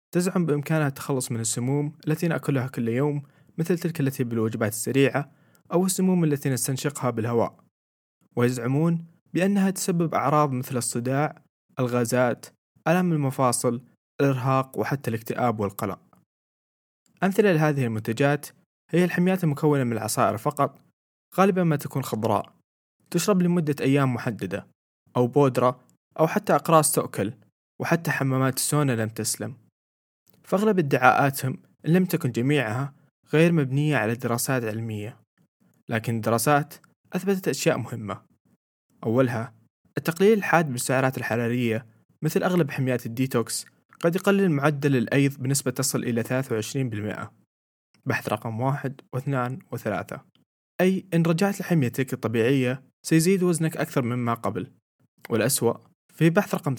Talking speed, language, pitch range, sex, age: 115 wpm, Arabic, 120-160 Hz, male, 20-39